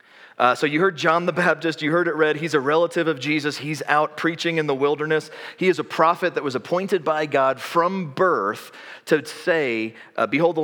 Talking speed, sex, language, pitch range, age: 215 wpm, male, English, 130-165 Hz, 30-49